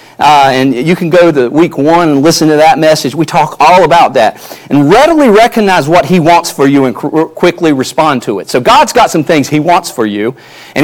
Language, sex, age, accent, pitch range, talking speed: English, male, 40-59, American, 135-190 Hz, 235 wpm